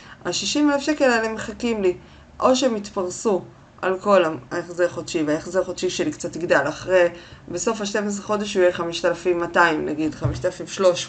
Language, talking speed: Hebrew, 175 wpm